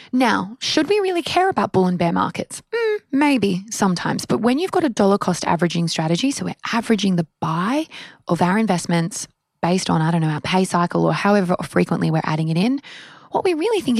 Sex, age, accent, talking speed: female, 20-39, Australian, 210 wpm